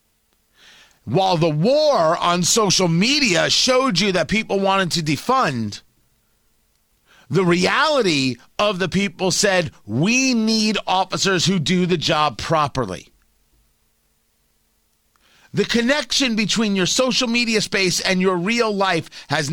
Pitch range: 140-210 Hz